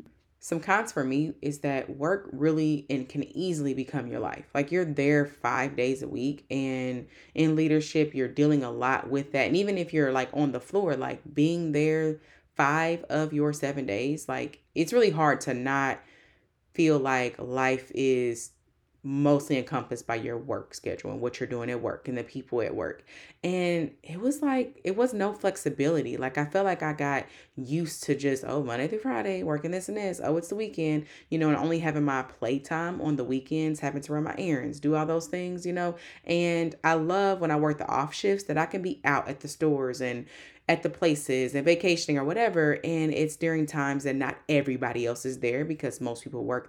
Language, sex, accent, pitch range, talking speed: English, female, American, 135-165 Hz, 210 wpm